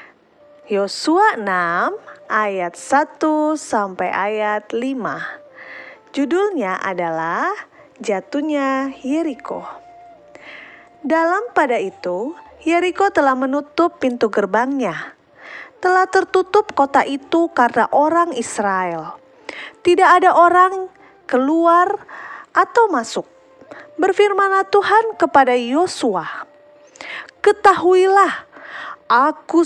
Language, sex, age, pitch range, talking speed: Indonesian, female, 30-49, 245-355 Hz, 75 wpm